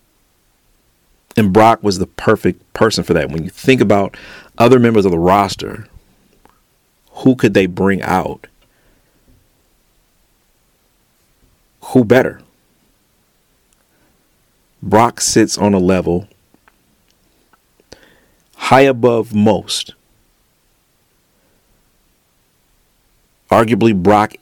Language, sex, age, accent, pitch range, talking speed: English, male, 40-59, American, 90-110 Hz, 85 wpm